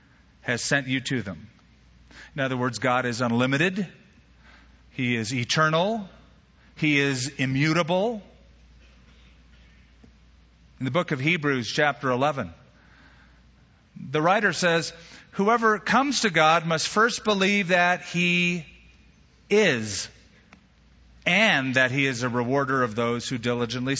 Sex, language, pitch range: male, English, 120-175 Hz